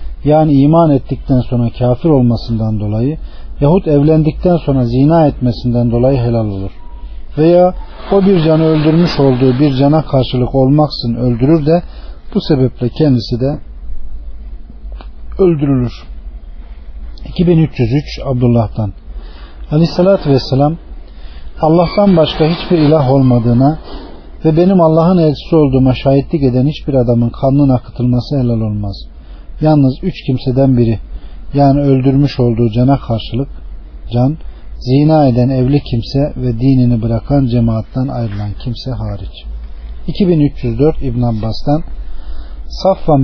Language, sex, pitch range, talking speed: Turkish, male, 115-150 Hz, 110 wpm